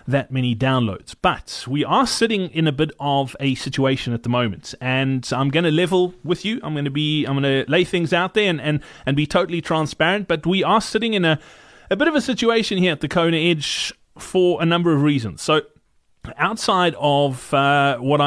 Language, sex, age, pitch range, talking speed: English, male, 30-49, 145-175 Hz, 215 wpm